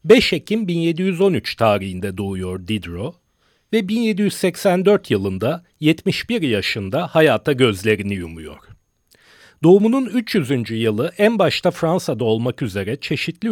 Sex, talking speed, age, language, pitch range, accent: male, 100 wpm, 40-59, Turkish, 115-185 Hz, native